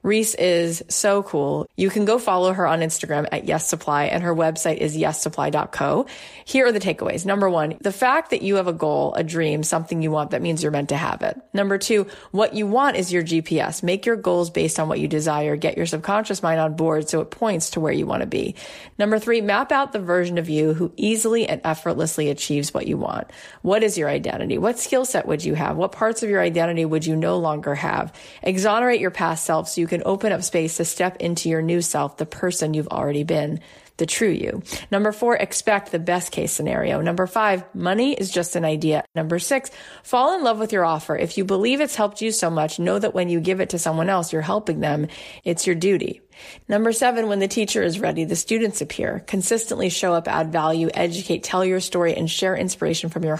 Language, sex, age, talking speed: English, female, 30-49, 230 wpm